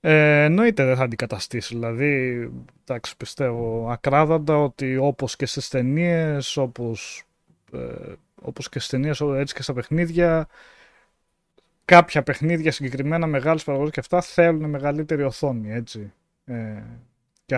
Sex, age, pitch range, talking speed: male, 20-39, 120-155 Hz, 120 wpm